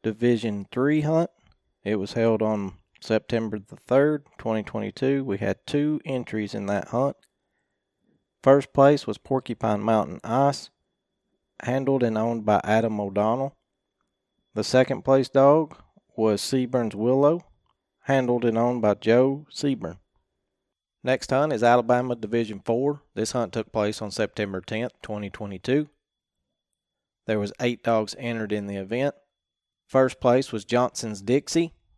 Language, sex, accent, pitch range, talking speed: English, male, American, 110-135 Hz, 130 wpm